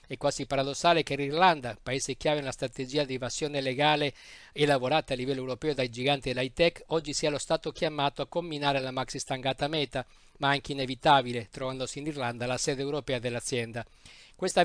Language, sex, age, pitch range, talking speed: Italian, male, 50-69, 130-155 Hz, 170 wpm